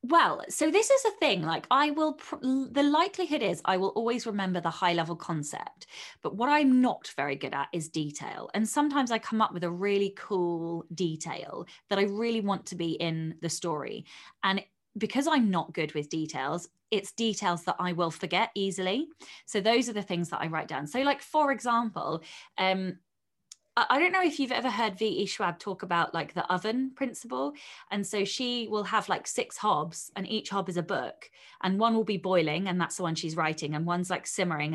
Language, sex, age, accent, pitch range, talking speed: English, female, 20-39, British, 165-215 Hz, 205 wpm